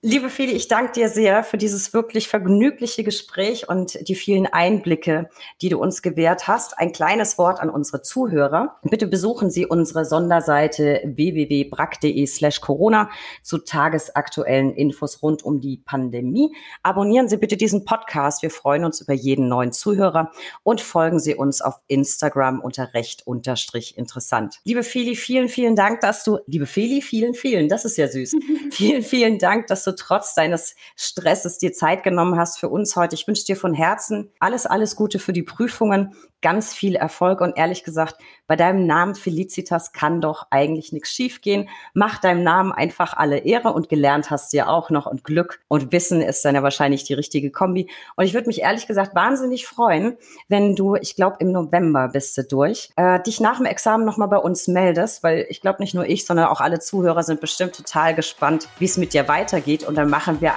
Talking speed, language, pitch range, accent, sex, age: 190 wpm, German, 150-205 Hz, German, female, 30-49